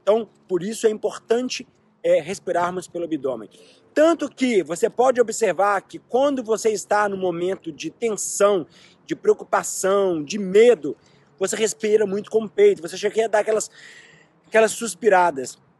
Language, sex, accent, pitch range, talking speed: Portuguese, male, Brazilian, 200-260 Hz, 150 wpm